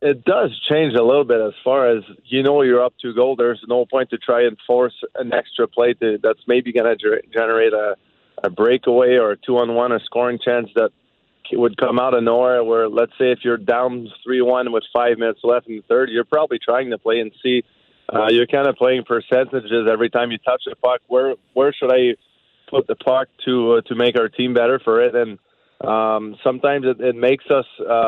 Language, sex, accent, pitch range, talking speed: English, male, American, 115-125 Hz, 220 wpm